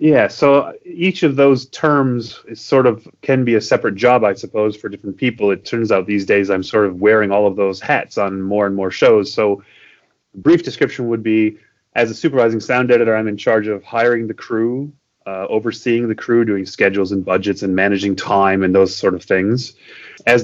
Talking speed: 210 wpm